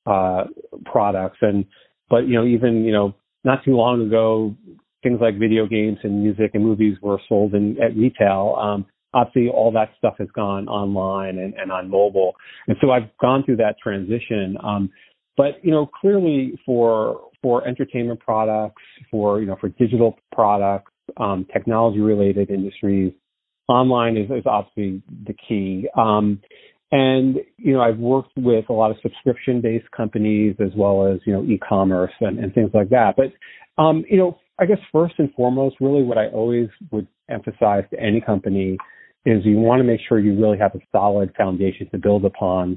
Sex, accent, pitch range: male, American, 100-120 Hz